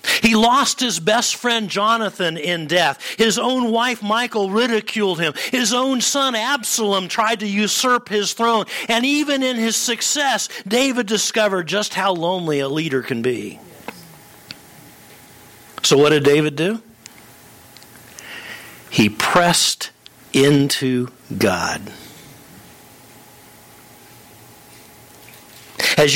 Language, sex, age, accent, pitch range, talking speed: English, male, 50-69, American, 140-230 Hz, 110 wpm